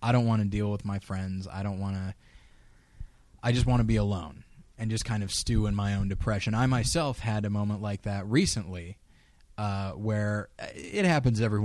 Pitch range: 100-125 Hz